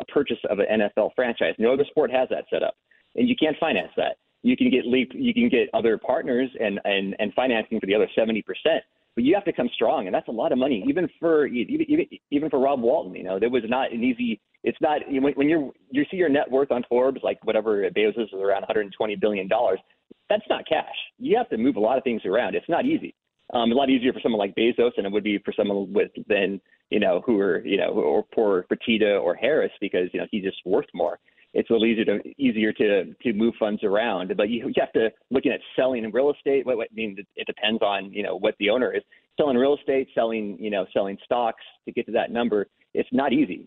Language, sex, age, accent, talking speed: English, male, 30-49, American, 245 wpm